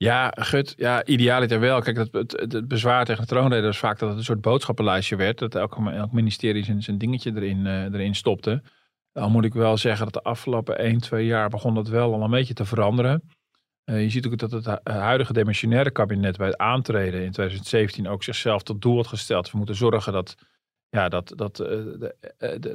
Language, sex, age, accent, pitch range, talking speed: Dutch, male, 40-59, Dutch, 105-125 Hz, 220 wpm